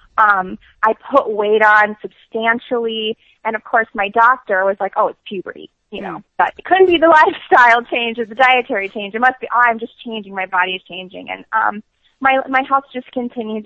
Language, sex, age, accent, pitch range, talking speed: English, female, 20-39, American, 190-230 Hz, 205 wpm